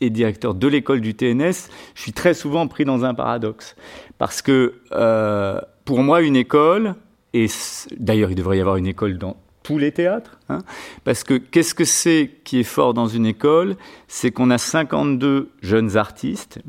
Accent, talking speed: French, 185 wpm